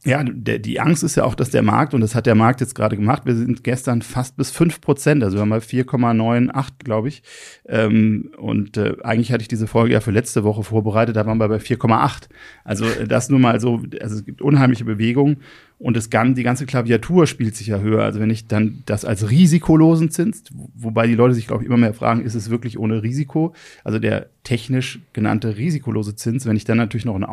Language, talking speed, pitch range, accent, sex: German, 225 wpm, 110-125 Hz, German, male